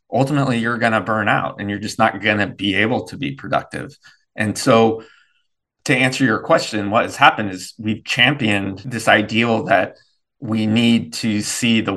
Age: 20-39